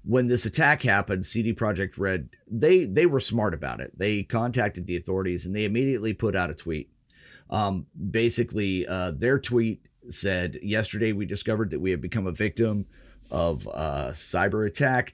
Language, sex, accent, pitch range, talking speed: English, male, American, 95-120 Hz, 170 wpm